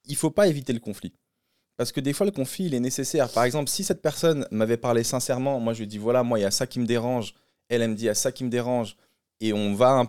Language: French